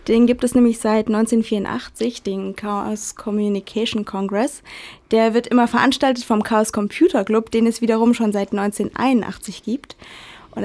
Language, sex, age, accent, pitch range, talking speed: German, female, 20-39, German, 215-245 Hz, 145 wpm